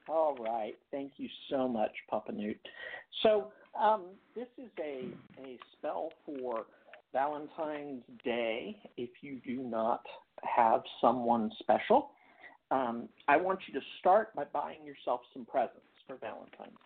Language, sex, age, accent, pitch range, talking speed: English, male, 50-69, American, 125-185 Hz, 135 wpm